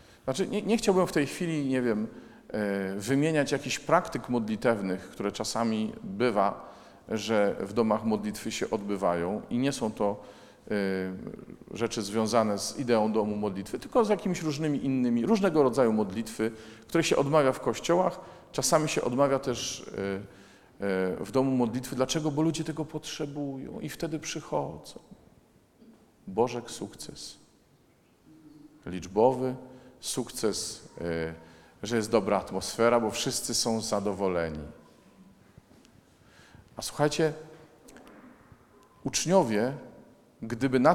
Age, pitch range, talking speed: 40-59, 105-140 Hz, 120 wpm